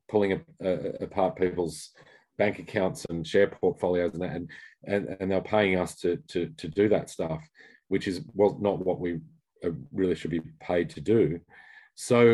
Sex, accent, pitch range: male, Australian, 85-100 Hz